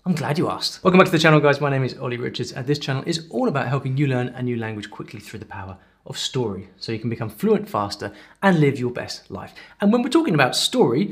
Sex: male